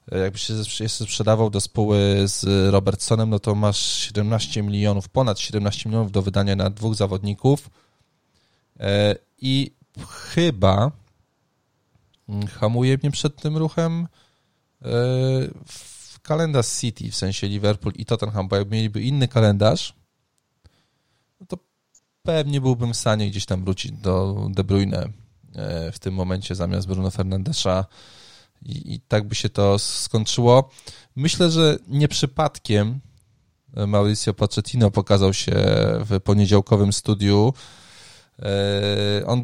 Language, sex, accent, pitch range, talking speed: Polish, male, native, 100-125 Hz, 115 wpm